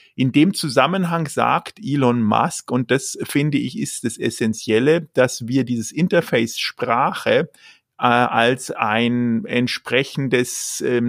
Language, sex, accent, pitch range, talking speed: German, male, German, 120-145 Hz, 125 wpm